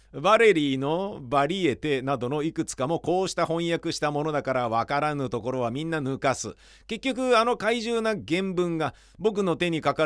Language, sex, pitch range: Japanese, male, 135-185 Hz